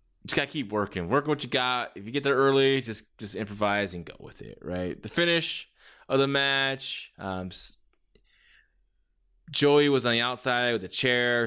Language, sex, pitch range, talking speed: English, male, 100-135 Hz, 185 wpm